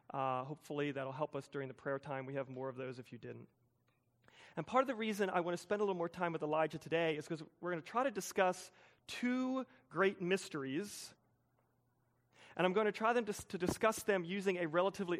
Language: English